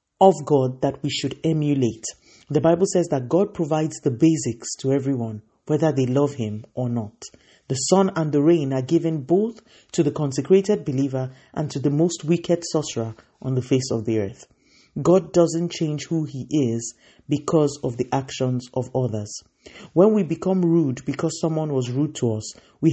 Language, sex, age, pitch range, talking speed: English, male, 50-69, 130-170 Hz, 180 wpm